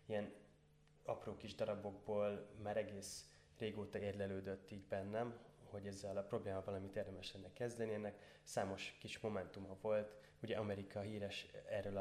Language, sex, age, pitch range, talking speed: Hungarian, male, 20-39, 95-105 Hz, 135 wpm